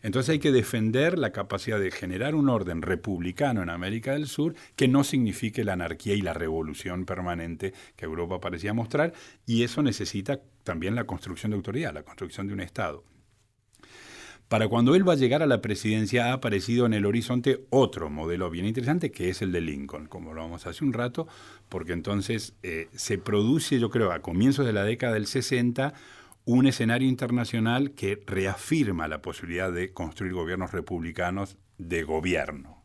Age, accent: 40-59, Argentinian